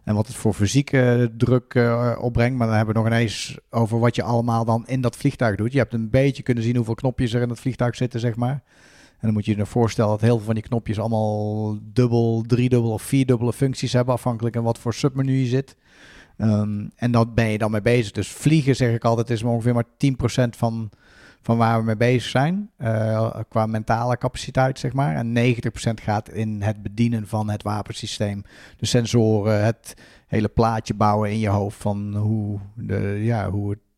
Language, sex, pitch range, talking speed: Dutch, male, 110-125 Hz, 205 wpm